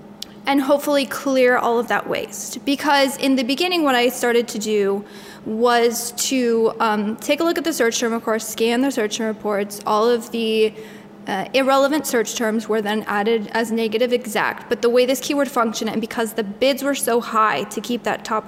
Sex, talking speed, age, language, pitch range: female, 205 wpm, 10-29, English, 215-245 Hz